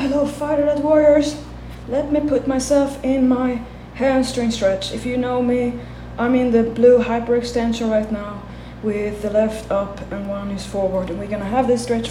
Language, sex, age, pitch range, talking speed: English, female, 20-39, 215-265 Hz, 185 wpm